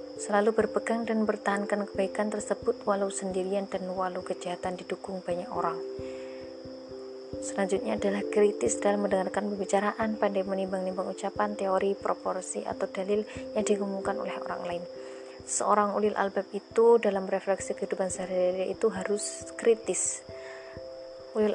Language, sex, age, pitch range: Indonesian, female, 20-39, 180-215 Hz